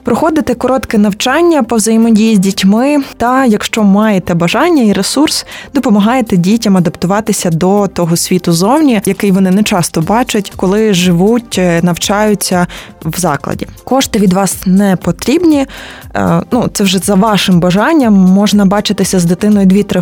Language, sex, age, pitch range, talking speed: Ukrainian, female, 20-39, 180-220 Hz, 140 wpm